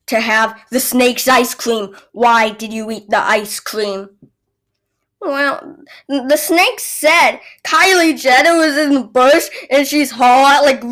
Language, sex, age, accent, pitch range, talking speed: English, female, 20-39, American, 215-270 Hz, 150 wpm